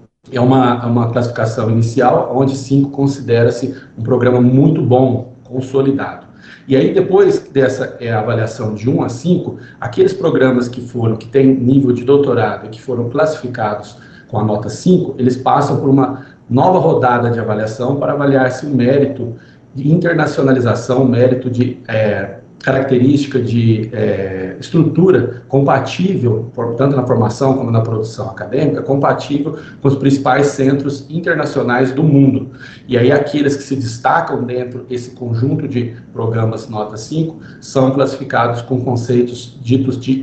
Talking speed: 140 wpm